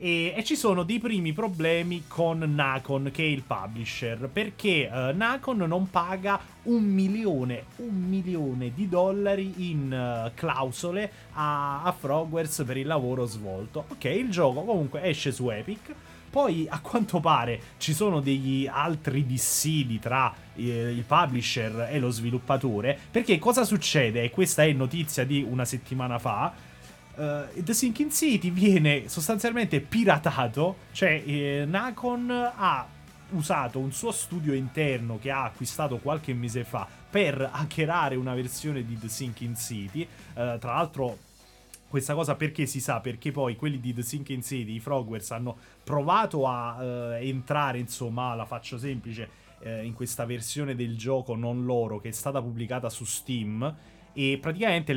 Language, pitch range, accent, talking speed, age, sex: Italian, 125-170 Hz, native, 145 wpm, 30-49, male